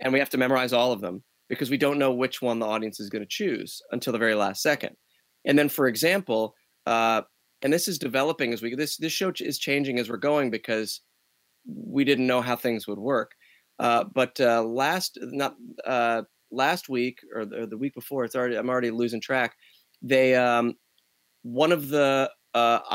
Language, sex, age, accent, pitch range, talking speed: English, male, 30-49, American, 115-135 Hz, 205 wpm